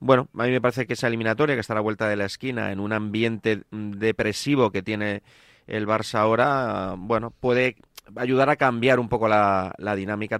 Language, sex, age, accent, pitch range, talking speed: Spanish, male, 30-49, Spanish, 100-125 Hz, 200 wpm